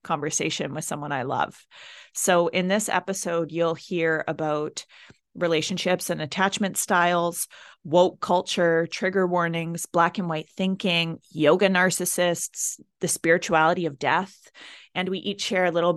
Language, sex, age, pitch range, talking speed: English, female, 30-49, 160-190 Hz, 135 wpm